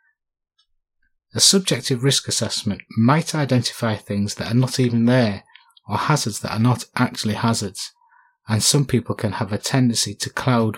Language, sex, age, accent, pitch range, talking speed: English, male, 30-49, British, 110-130 Hz, 155 wpm